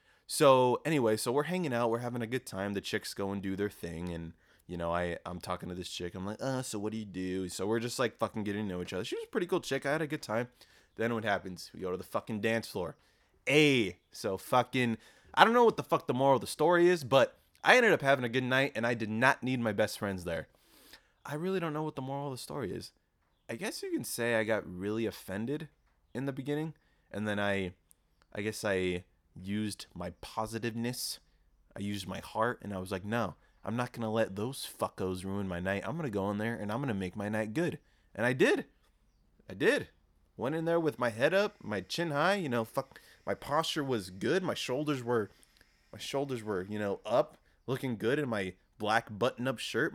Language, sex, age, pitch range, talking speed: English, male, 20-39, 95-135 Hz, 240 wpm